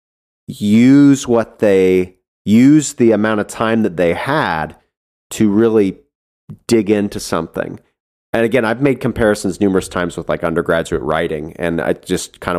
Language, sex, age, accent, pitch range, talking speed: English, male, 40-59, American, 85-110 Hz, 150 wpm